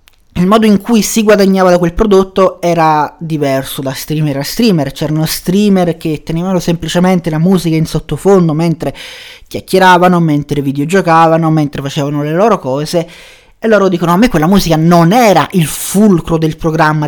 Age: 20-39